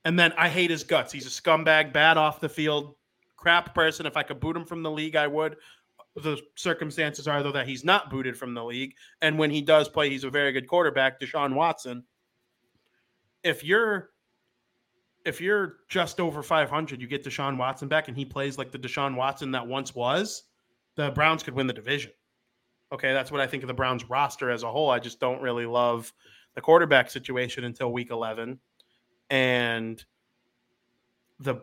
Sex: male